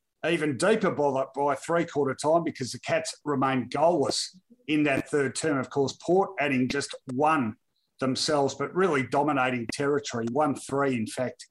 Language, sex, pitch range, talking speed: English, male, 135-155 Hz, 160 wpm